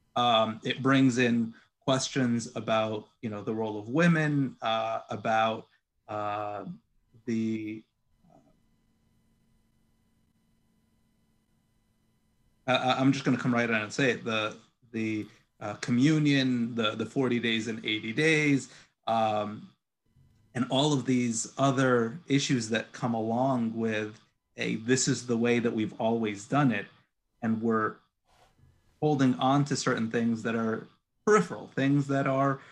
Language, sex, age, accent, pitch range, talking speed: English, male, 30-49, American, 115-140 Hz, 130 wpm